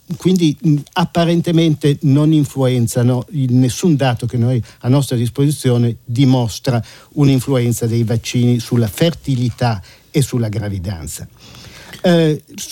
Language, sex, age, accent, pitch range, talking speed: Italian, male, 50-69, native, 120-155 Hz, 100 wpm